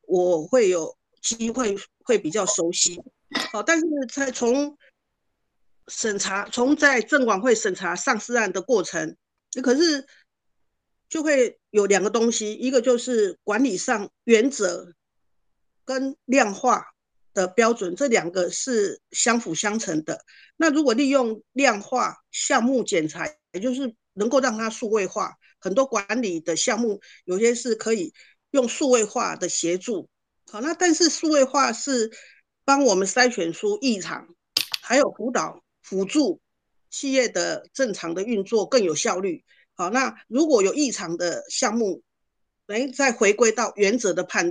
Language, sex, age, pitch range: Chinese, female, 50-69, 205-275 Hz